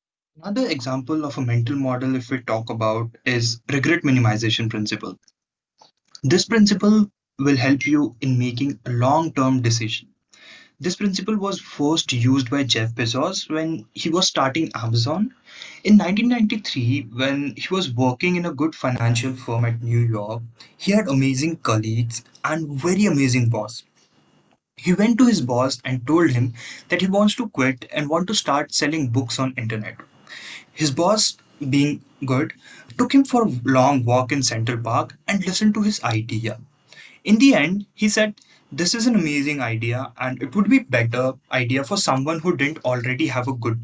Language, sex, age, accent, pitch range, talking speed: English, male, 20-39, Indian, 120-175 Hz, 170 wpm